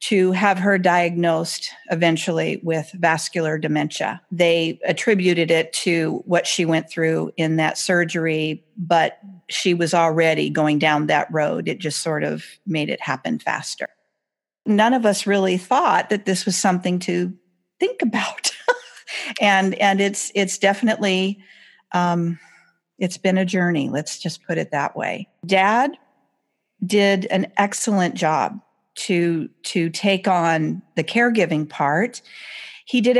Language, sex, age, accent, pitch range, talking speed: English, female, 50-69, American, 165-200 Hz, 140 wpm